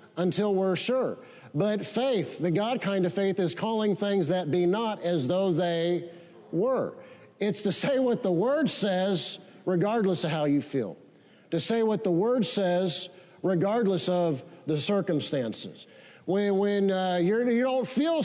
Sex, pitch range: male, 175-225 Hz